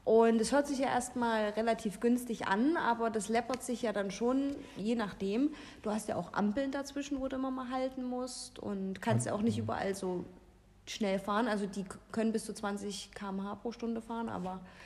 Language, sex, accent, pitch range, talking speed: German, female, German, 195-255 Hz, 200 wpm